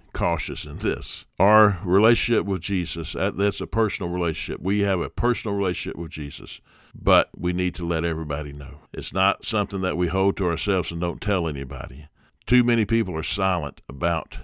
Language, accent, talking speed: English, American, 180 wpm